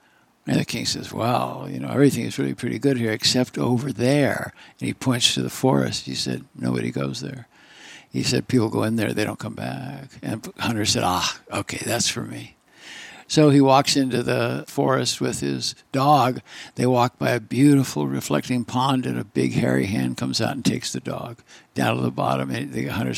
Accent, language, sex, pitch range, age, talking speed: American, English, male, 115-140 Hz, 60-79, 205 wpm